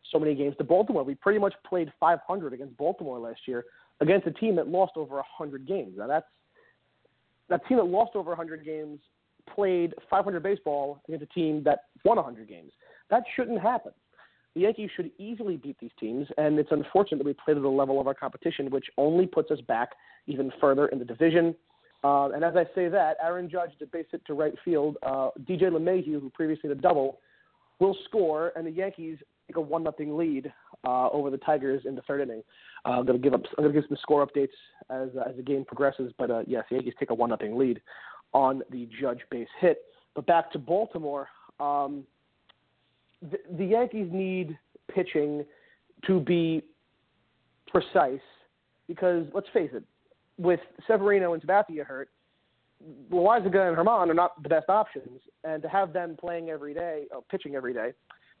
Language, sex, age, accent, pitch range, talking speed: English, male, 40-59, American, 140-180 Hz, 190 wpm